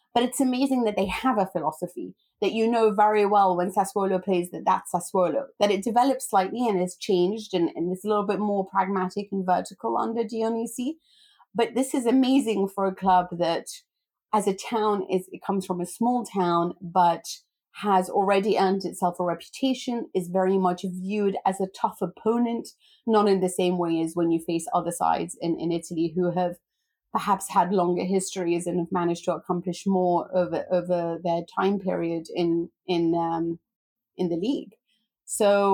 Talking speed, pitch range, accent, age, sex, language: 185 wpm, 175-205 Hz, British, 30-49, female, English